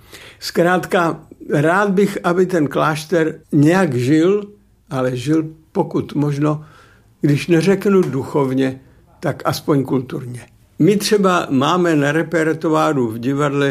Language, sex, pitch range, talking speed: Czech, male, 135-165 Hz, 110 wpm